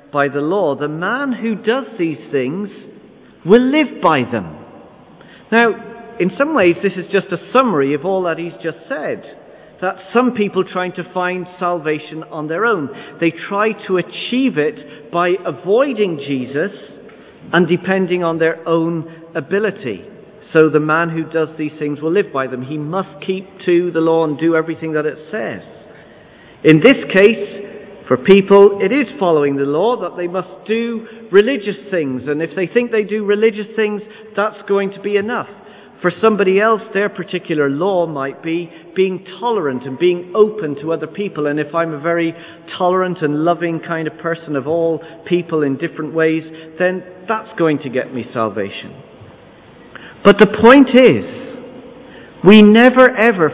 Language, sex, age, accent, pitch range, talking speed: English, male, 50-69, British, 160-210 Hz, 170 wpm